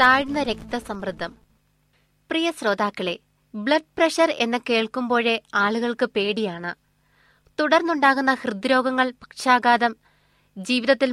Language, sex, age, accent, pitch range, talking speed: Malayalam, female, 20-39, native, 205-260 Hz, 65 wpm